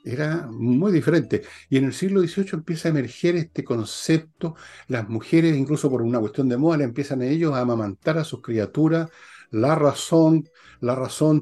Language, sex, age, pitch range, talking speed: Spanish, male, 50-69, 105-145 Hz, 165 wpm